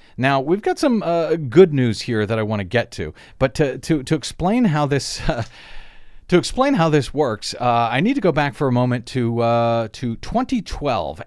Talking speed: 215 wpm